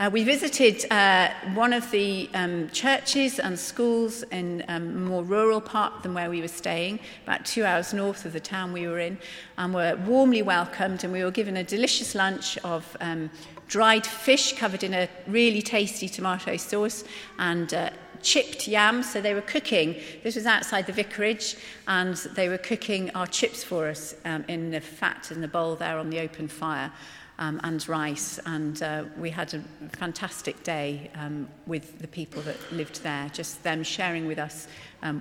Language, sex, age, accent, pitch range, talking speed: English, female, 40-59, British, 160-205 Hz, 185 wpm